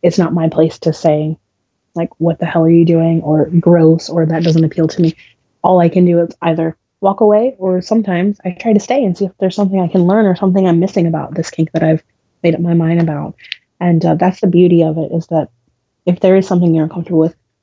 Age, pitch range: 20-39, 160-180 Hz